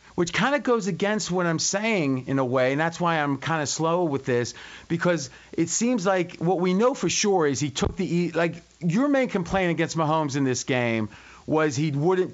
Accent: American